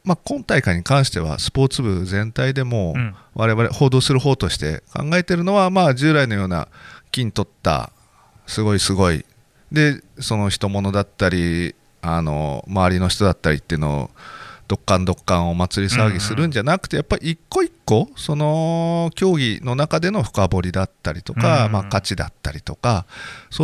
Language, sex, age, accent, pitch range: Japanese, male, 40-59, native, 95-150 Hz